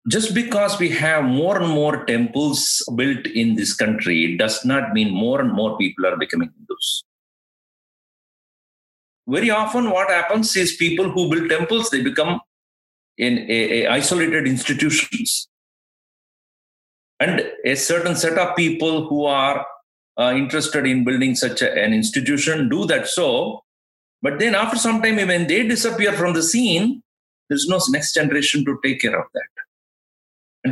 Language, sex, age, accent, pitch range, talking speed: English, male, 50-69, Indian, 140-220 Hz, 150 wpm